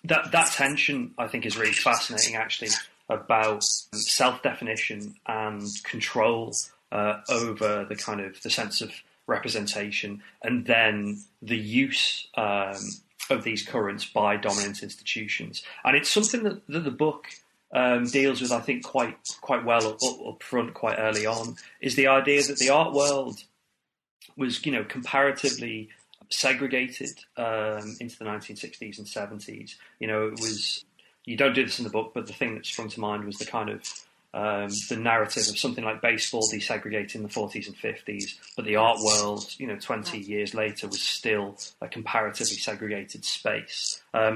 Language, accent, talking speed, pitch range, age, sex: English, British, 165 wpm, 105-135 Hz, 30-49, male